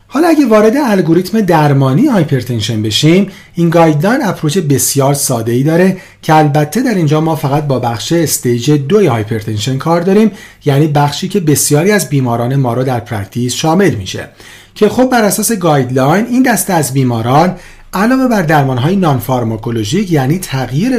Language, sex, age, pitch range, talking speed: Persian, male, 40-59, 130-195 Hz, 155 wpm